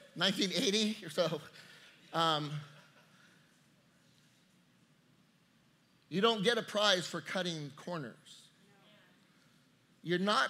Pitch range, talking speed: 170-225 Hz, 80 wpm